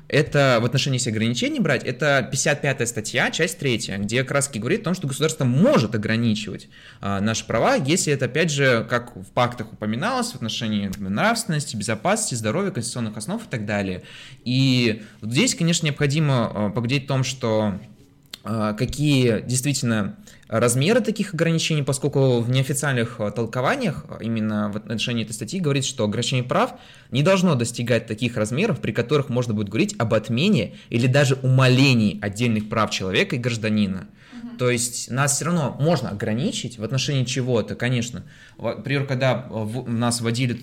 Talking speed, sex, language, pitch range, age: 150 wpm, male, Russian, 110-140 Hz, 20-39